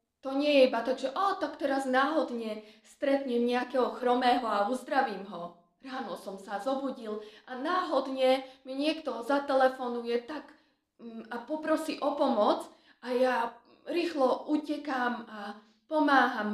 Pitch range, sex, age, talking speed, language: 200-255 Hz, female, 20-39, 130 wpm, Slovak